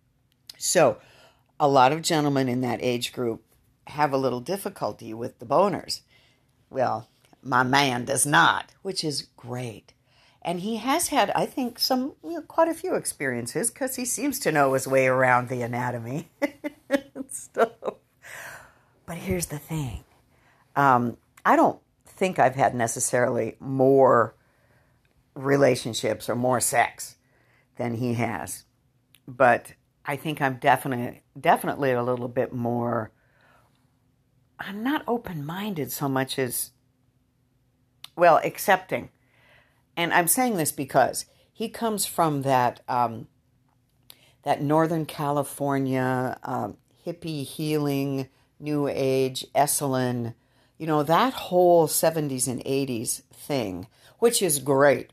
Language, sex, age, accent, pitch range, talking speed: English, female, 60-79, American, 125-155 Hz, 125 wpm